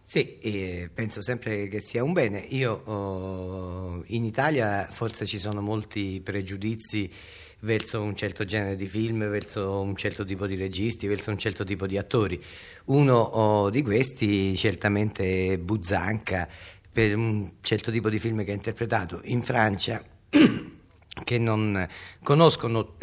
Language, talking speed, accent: Italian, 145 wpm, native